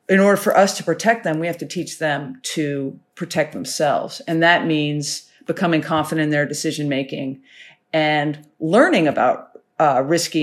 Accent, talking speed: American, 160 wpm